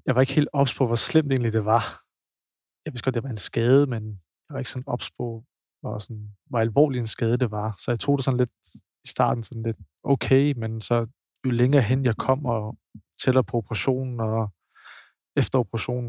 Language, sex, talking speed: Danish, male, 205 wpm